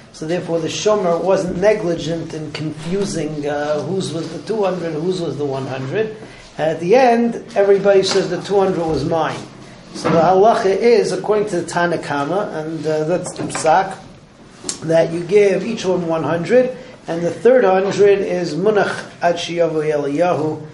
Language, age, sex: English, 40-59, male